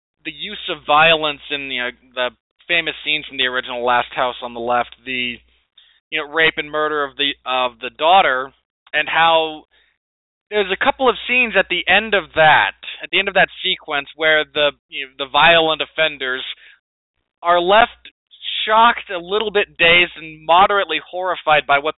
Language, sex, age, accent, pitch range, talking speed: English, male, 20-39, American, 135-170 Hz, 185 wpm